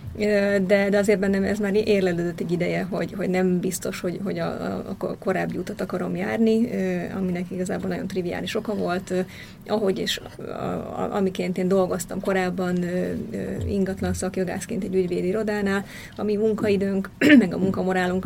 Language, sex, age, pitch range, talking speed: Hungarian, female, 30-49, 185-210 Hz, 150 wpm